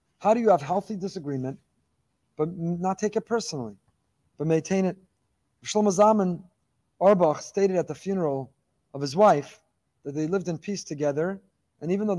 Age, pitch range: 30-49, 150-195 Hz